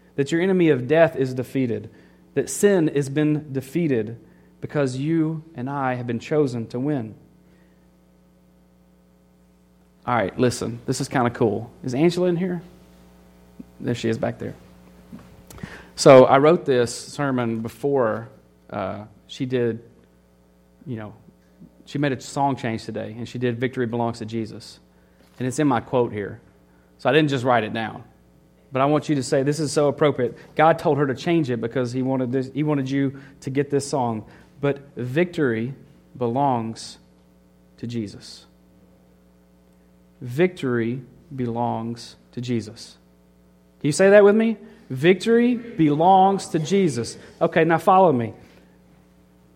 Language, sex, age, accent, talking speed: English, male, 30-49, American, 150 wpm